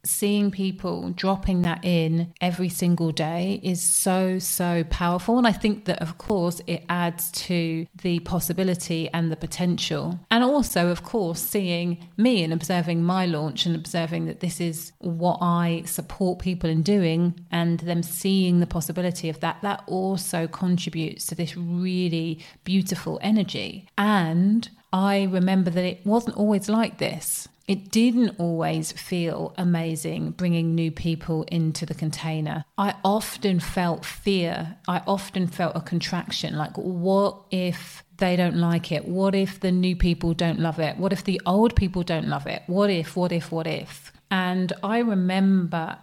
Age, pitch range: 30-49, 170-195 Hz